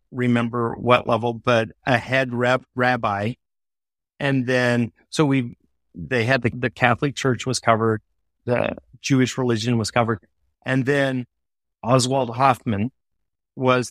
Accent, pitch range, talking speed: American, 115-130 Hz, 130 wpm